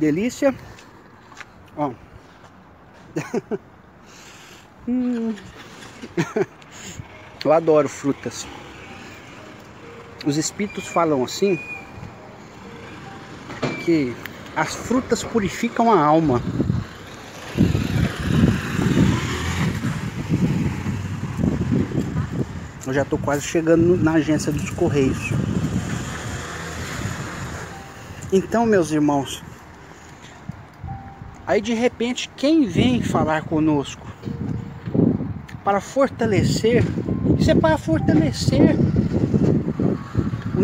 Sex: male